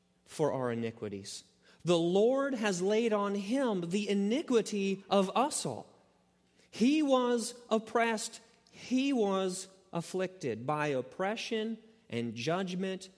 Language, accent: English, American